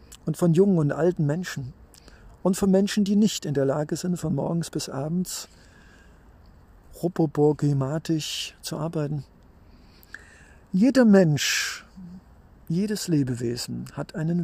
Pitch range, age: 135-175 Hz, 50-69